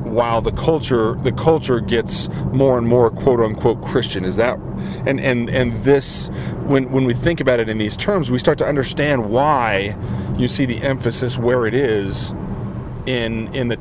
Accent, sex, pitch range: American, male, 110-130 Hz